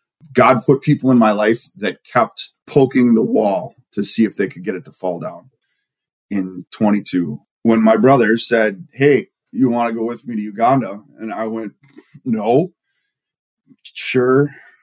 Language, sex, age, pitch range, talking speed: English, male, 20-39, 110-140 Hz, 165 wpm